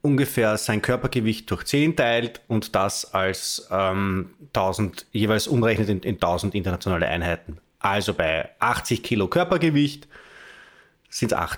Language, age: German, 30-49